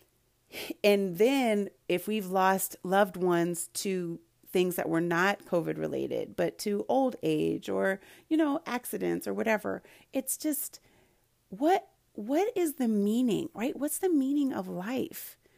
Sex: female